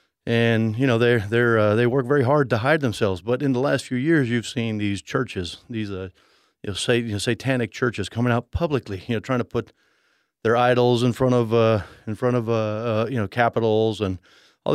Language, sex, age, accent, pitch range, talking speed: English, male, 40-59, American, 110-130 Hz, 230 wpm